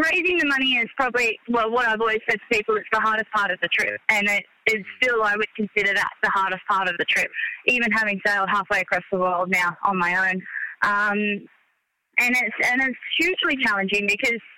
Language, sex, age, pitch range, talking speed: English, female, 20-39, 200-235 Hz, 210 wpm